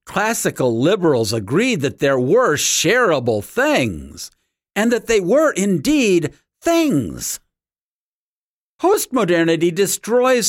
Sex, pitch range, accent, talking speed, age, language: male, 125-180 Hz, American, 90 wpm, 50-69, English